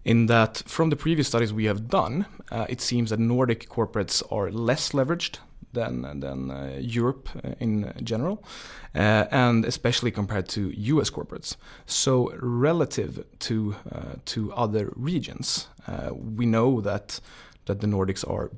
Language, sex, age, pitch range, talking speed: Swedish, male, 30-49, 95-115 Hz, 150 wpm